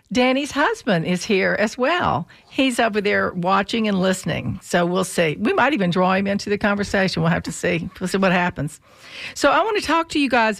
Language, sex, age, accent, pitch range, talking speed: English, female, 50-69, American, 185-240 Hz, 220 wpm